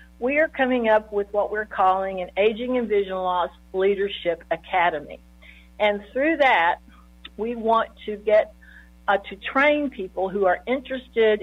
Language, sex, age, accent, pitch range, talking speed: English, female, 50-69, American, 185-230 Hz, 150 wpm